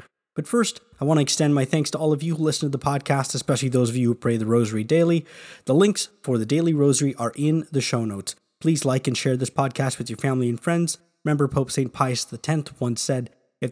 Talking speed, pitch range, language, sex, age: 245 wpm, 125-160 Hz, English, male, 20-39